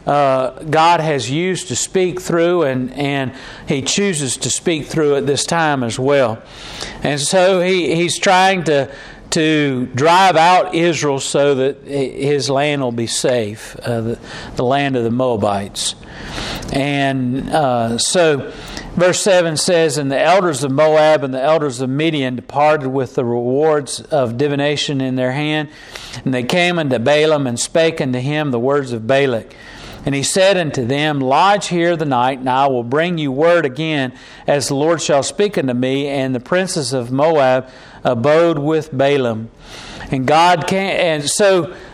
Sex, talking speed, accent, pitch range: male, 170 wpm, American, 130-170 Hz